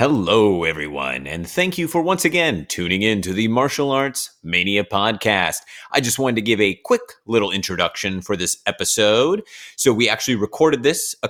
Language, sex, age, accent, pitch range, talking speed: English, male, 30-49, American, 90-120 Hz, 180 wpm